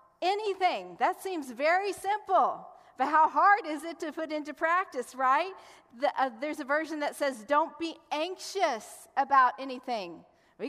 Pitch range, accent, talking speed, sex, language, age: 265-325 Hz, American, 155 wpm, female, English, 40-59